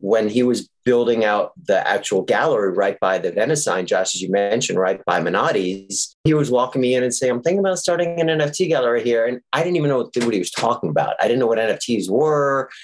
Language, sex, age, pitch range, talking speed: English, male, 30-49, 95-135 Hz, 240 wpm